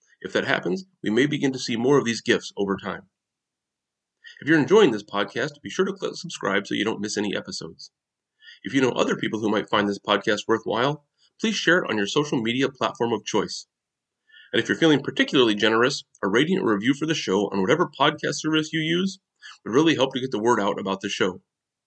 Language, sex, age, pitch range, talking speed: English, male, 30-49, 105-170 Hz, 220 wpm